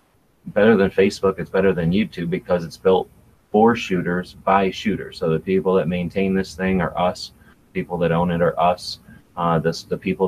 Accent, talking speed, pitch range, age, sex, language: American, 185 wpm, 80-95 Hz, 30-49, male, English